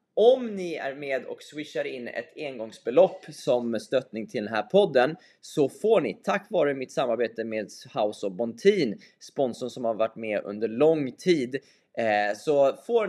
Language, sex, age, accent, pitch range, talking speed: Swedish, male, 20-39, native, 110-165 Hz, 165 wpm